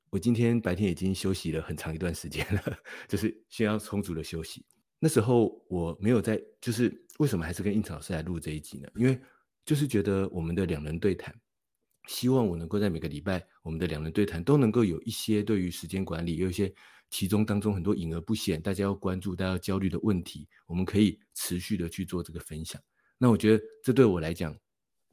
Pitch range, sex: 85-110 Hz, male